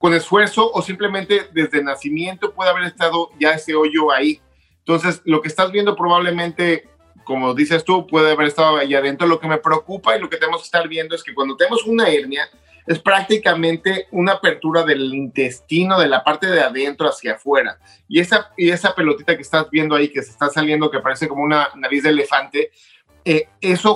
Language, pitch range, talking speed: Spanish, 145-180 Hz, 200 wpm